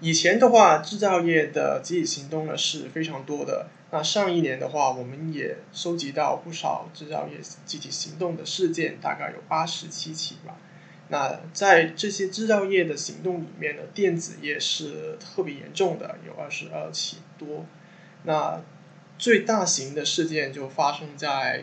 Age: 20-39